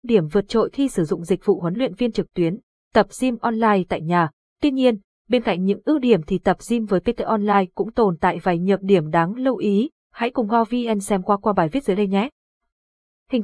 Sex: female